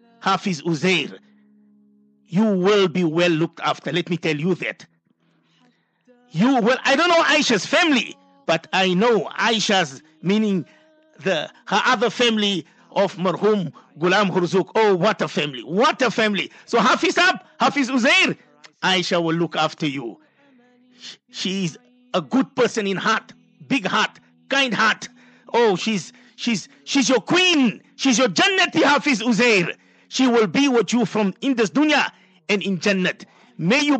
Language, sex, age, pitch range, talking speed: English, male, 50-69, 175-255 Hz, 155 wpm